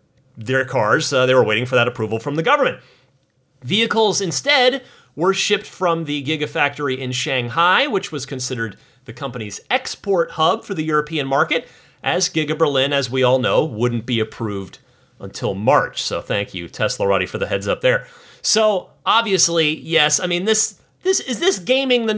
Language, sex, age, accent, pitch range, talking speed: English, male, 30-49, American, 135-205 Hz, 175 wpm